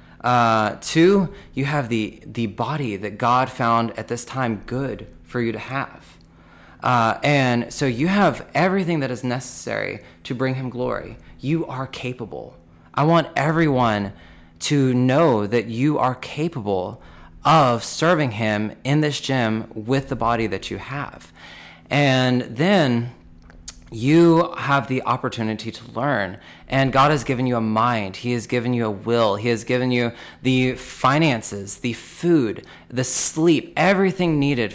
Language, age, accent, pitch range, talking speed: English, 20-39, American, 110-140 Hz, 150 wpm